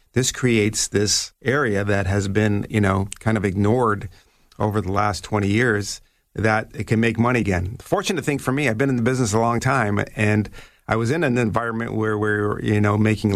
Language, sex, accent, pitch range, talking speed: English, male, American, 95-110 Hz, 205 wpm